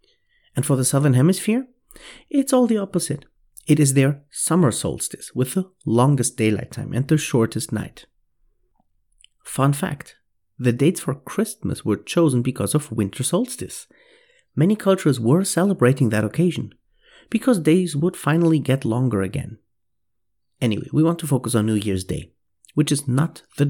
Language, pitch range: English, 125-180 Hz